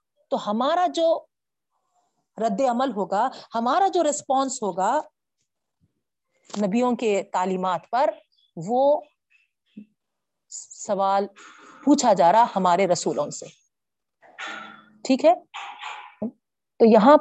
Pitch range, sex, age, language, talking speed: 205-295 Hz, female, 40-59, Urdu, 90 wpm